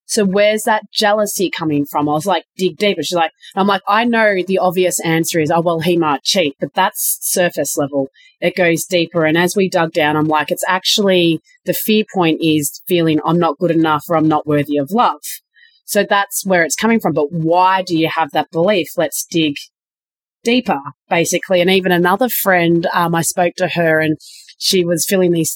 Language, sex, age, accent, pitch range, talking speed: English, female, 30-49, Australian, 165-195 Hz, 205 wpm